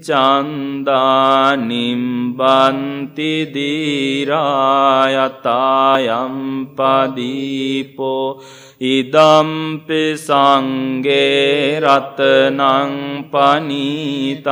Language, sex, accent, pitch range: English, male, Indian, 130-140 Hz